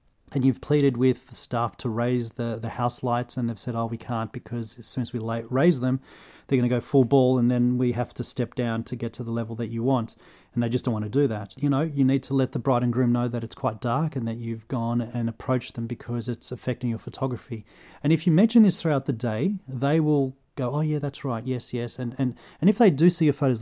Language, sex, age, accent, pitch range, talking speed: English, male, 30-49, Australian, 120-135 Hz, 275 wpm